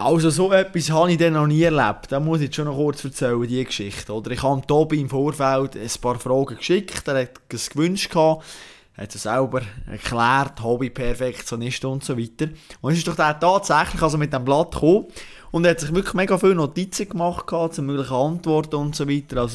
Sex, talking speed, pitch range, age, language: male, 210 wpm, 130-160 Hz, 20-39, German